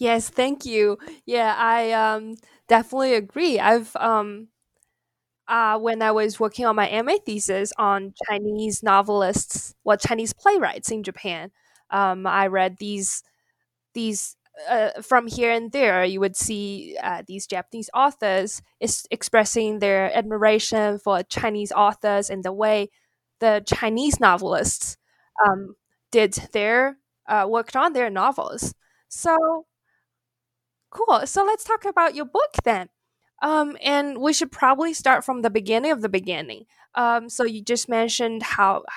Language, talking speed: English, 140 wpm